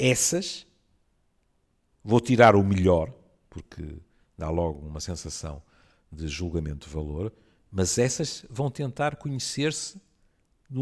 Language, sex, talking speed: Portuguese, male, 110 wpm